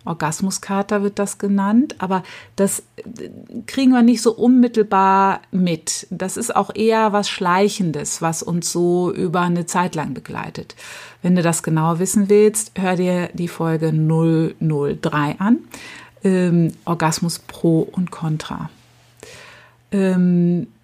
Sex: female